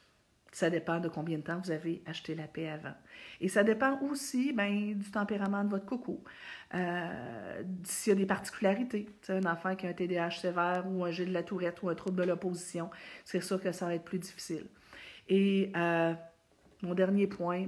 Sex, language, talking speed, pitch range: female, French, 205 wpm, 170-210 Hz